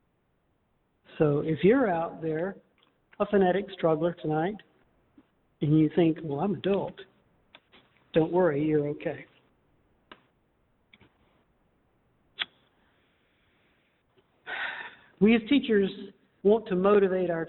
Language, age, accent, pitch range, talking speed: English, 60-79, American, 170-210 Hz, 90 wpm